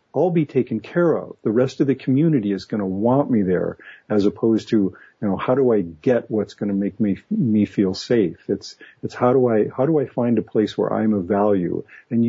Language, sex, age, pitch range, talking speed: French, male, 50-69, 100-130 Hz, 240 wpm